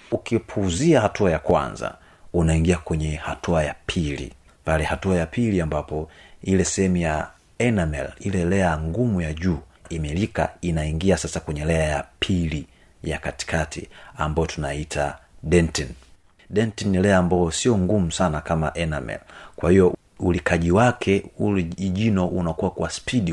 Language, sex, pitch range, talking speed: Swahili, male, 80-95 Hz, 130 wpm